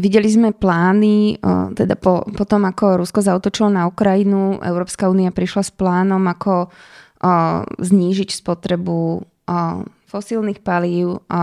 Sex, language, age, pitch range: female, Slovak, 20-39, 175-200 Hz